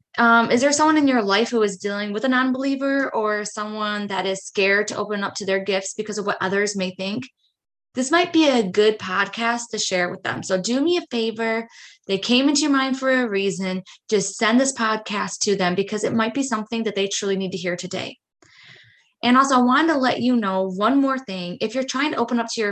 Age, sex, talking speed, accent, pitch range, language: 20-39, female, 240 wpm, American, 185-235 Hz, English